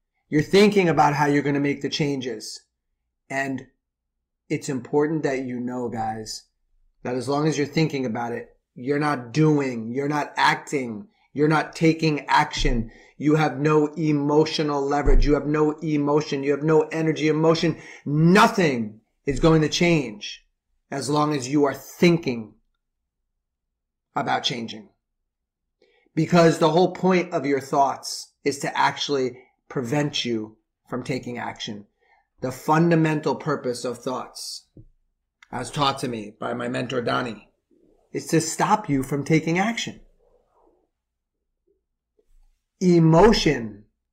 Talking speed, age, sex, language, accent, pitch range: 130 wpm, 30-49, male, English, American, 120-155 Hz